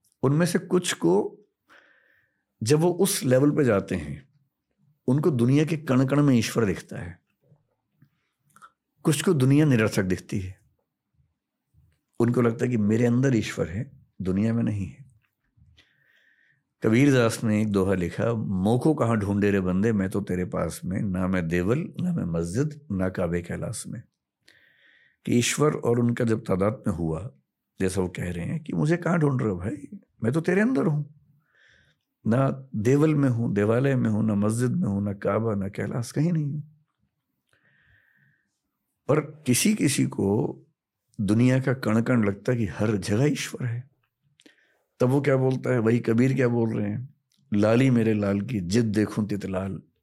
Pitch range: 100-140 Hz